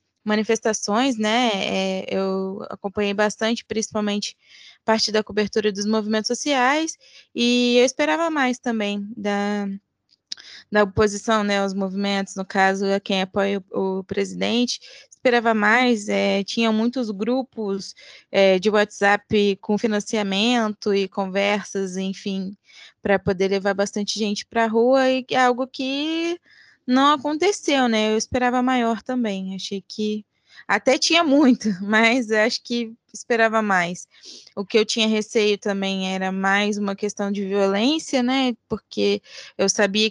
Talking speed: 135 wpm